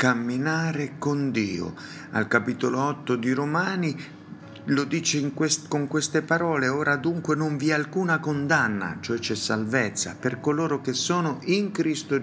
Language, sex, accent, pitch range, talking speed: Italian, male, native, 110-150 Hz, 150 wpm